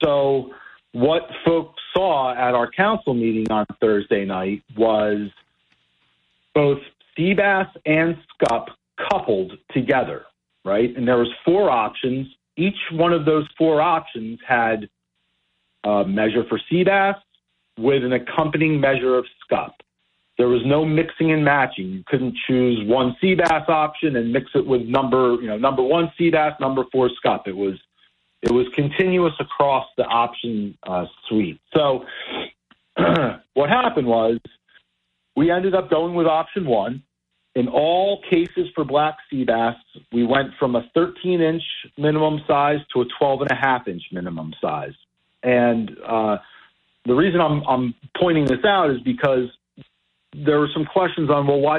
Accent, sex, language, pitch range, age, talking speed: American, male, English, 115-155 Hz, 40-59, 150 wpm